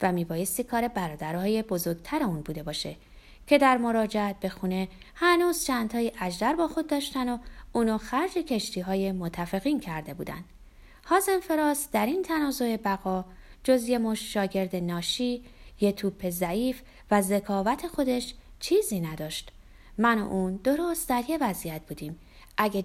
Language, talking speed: Persian, 140 wpm